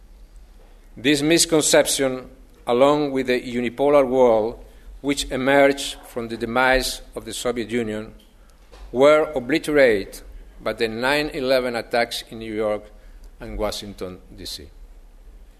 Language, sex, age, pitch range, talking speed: English, male, 50-69, 120-150 Hz, 110 wpm